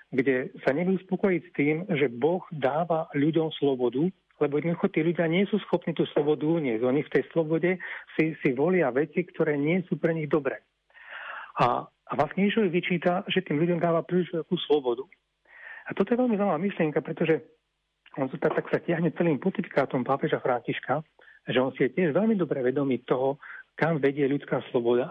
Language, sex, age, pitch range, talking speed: Slovak, male, 40-59, 145-180 Hz, 180 wpm